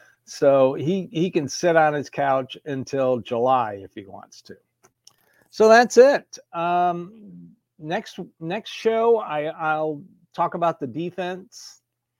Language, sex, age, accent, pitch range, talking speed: English, male, 60-79, American, 125-165 Hz, 135 wpm